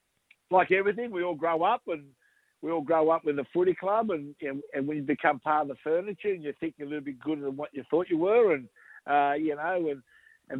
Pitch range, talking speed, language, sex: 145-170 Hz, 250 wpm, English, male